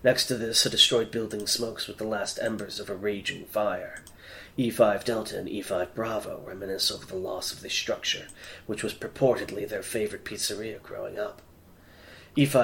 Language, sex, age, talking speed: English, male, 30-49, 170 wpm